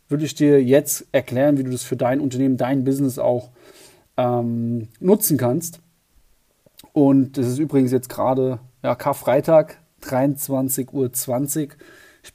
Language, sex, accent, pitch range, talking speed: German, male, German, 125-140 Hz, 130 wpm